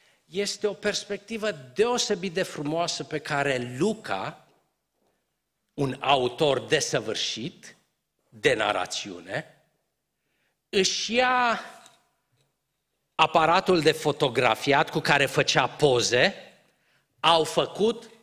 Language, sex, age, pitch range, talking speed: Romanian, male, 50-69, 125-170 Hz, 80 wpm